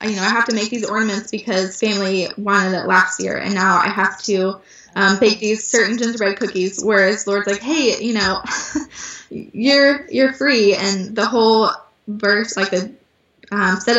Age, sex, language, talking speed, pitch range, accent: 10-29, female, English, 180 wpm, 195-230 Hz, American